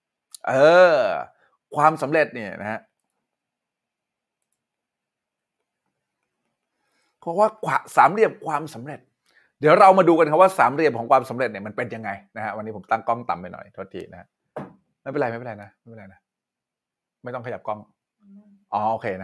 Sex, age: male, 20-39